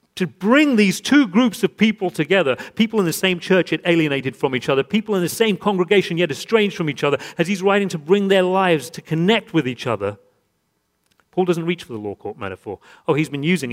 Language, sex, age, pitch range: English, male, 40-59, 135-185 Hz